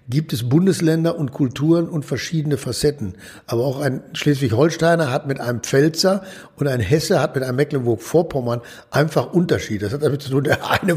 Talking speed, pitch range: 175 wpm, 130-165 Hz